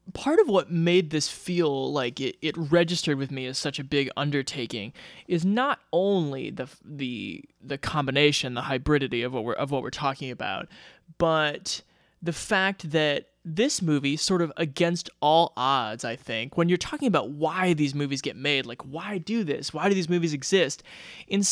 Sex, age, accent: male, 20-39, American